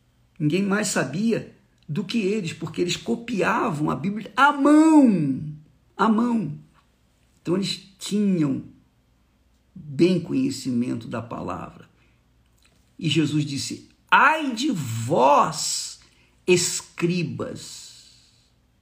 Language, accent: Portuguese, Brazilian